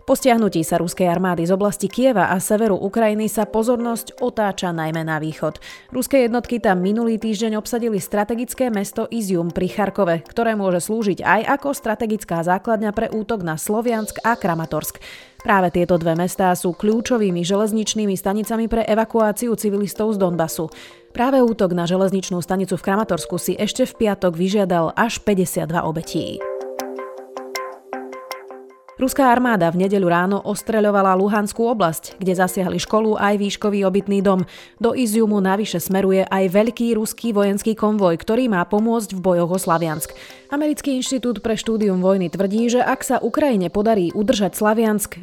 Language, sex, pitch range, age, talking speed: Slovak, female, 180-225 Hz, 30-49, 150 wpm